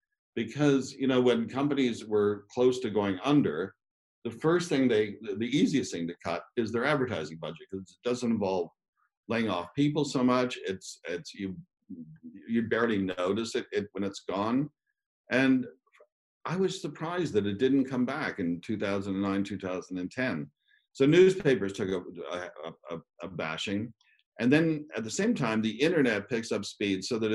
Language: English